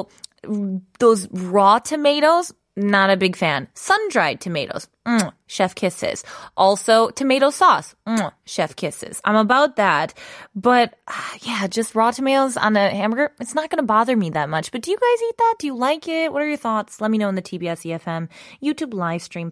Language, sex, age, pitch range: Korean, female, 20-39, 185-290 Hz